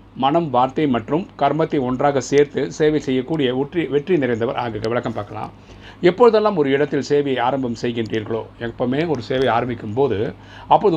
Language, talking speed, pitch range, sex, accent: Tamil, 140 wpm, 115-140 Hz, male, native